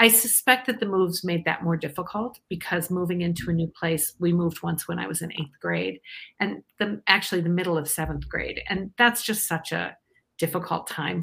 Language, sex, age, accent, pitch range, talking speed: English, female, 50-69, American, 165-225 Hz, 205 wpm